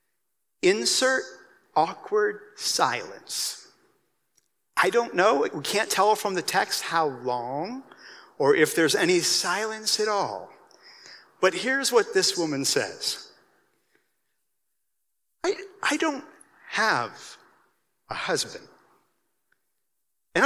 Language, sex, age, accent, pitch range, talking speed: English, male, 50-69, American, 235-355 Hz, 100 wpm